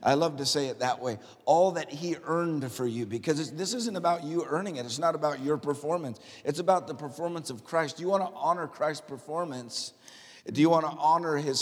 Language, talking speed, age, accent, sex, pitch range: English, 215 wpm, 50-69, American, male, 155-195 Hz